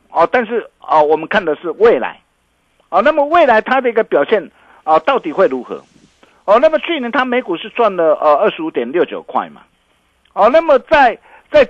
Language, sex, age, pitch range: Chinese, male, 50-69, 120-185 Hz